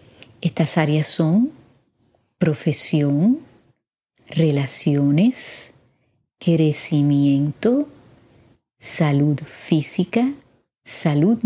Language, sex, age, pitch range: Spanish, female, 30-49, 150-195 Hz